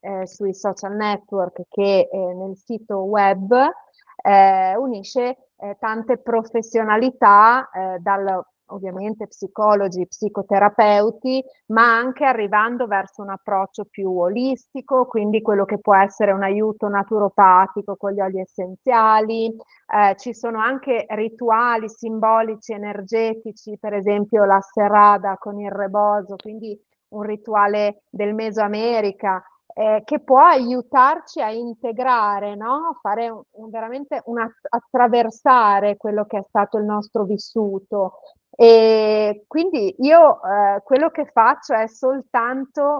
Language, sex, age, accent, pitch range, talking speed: Italian, female, 30-49, native, 205-240 Hz, 115 wpm